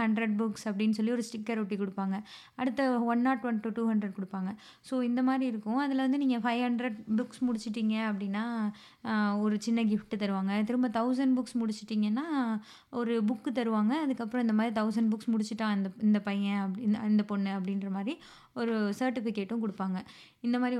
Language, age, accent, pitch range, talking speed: Tamil, 20-39, native, 210-245 Hz, 145 wpm